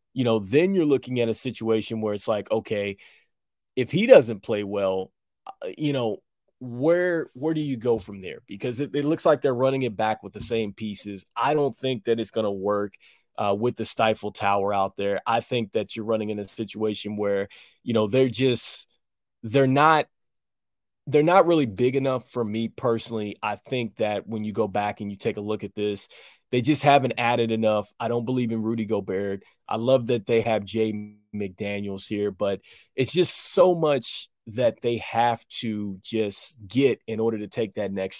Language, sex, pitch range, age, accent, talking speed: English, male, 105-125 Hz, 20-39, American, 200 wpm